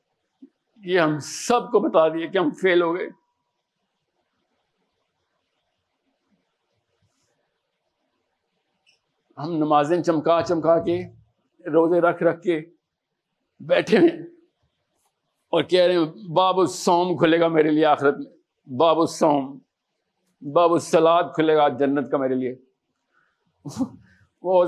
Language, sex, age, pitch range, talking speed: Urdu, male, 50-69, 165-215 Hz, 110 wpm